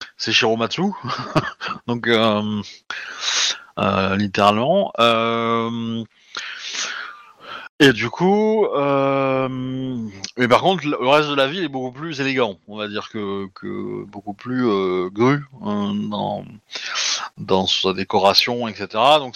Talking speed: 120 wpm